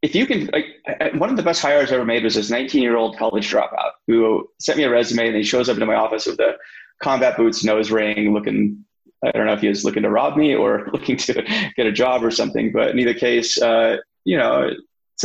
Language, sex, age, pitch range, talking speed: English, male, 30-49, 110-145 Hz, 250 wpm